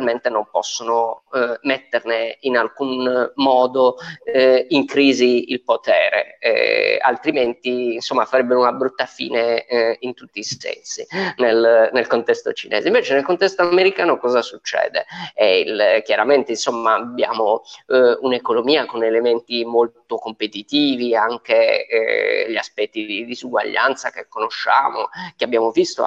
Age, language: 30-49, Italian